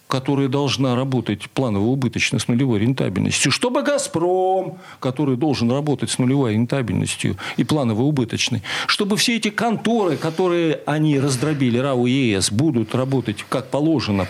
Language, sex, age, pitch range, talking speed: Russian, male, 50-69, 125-185 Hz, 125 wpm